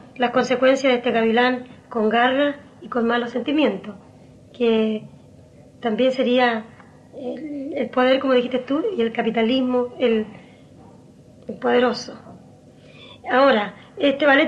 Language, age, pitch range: Spanish, 20-39, 240-285 Hz